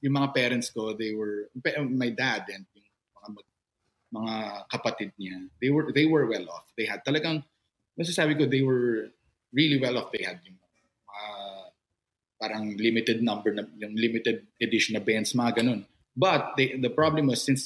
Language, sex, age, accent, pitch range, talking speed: Filipino, male, 20-39, native, 110-145 Hz, 175 wpm